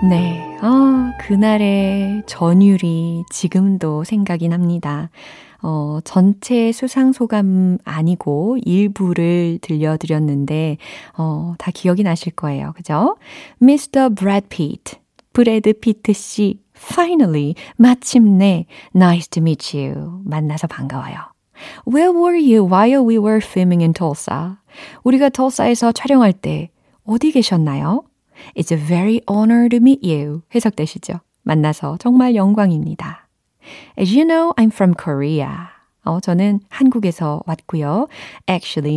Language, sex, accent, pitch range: Korean, female, native, 160-230 Hz